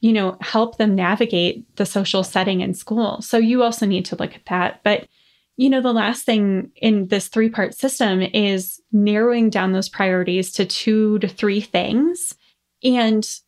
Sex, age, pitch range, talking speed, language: female, 20-39, 195-235 Hz, 180 wpm, English